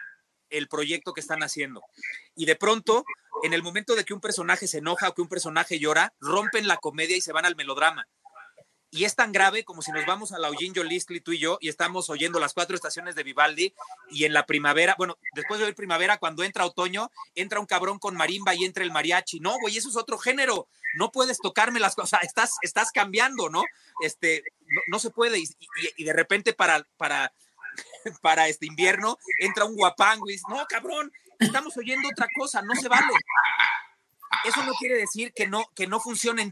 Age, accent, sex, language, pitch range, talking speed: 40-59, Mexican, male, Spanish, 170-230 Hz, 205 wpm